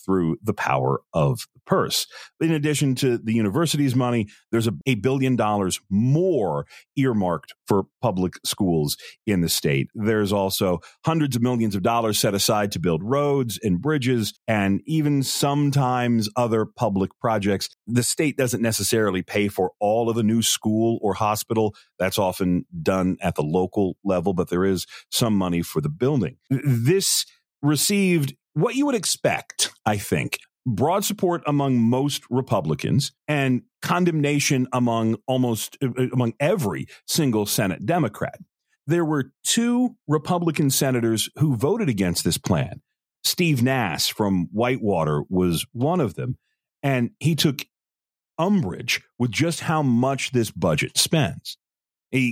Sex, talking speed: male, 145 wpm